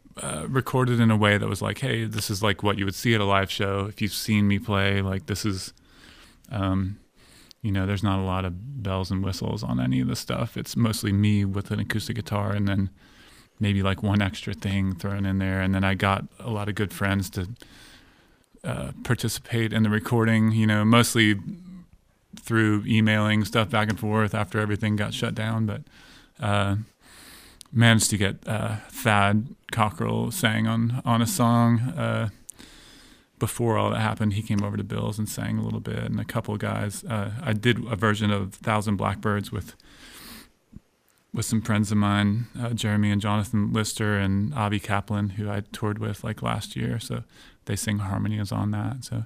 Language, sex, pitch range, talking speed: English, male, 100-115 Hz, 195 wpm